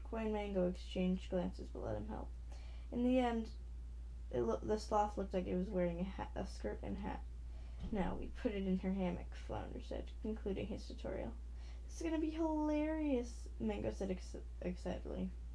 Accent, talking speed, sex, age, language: American, 190 wpm, female, 10-29, English